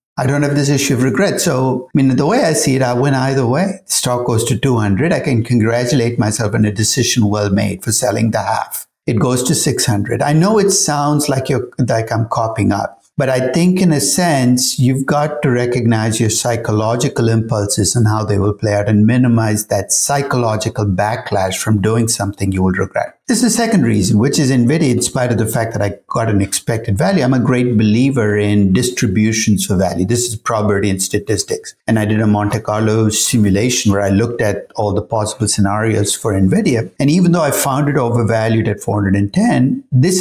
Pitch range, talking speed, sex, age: 105-135 Hz, 210 wpm, male, 60-79